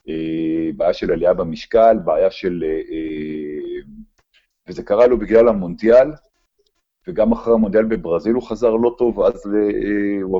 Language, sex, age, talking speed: Hebrew, male, 50-69, 120 wpm